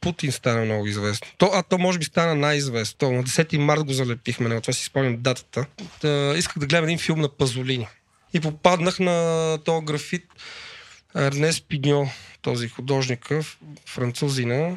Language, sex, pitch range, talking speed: Bulgarian, male, 130-160 Hz, 160 wpm